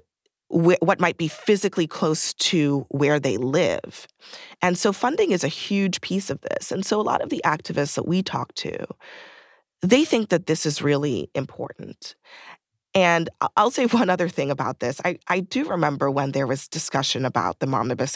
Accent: American